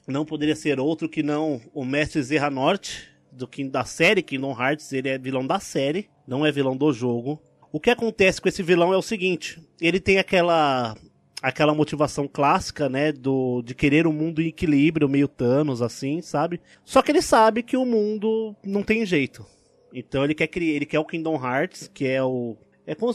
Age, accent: 20-39, Brazilian